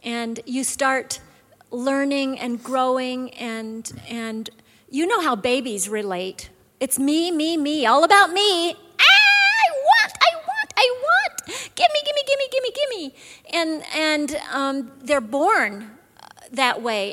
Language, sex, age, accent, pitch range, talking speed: English, female, 40-59, American, 245-300 Hz, 145 wpm